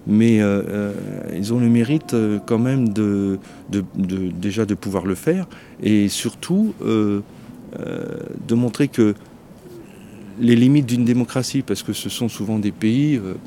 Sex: male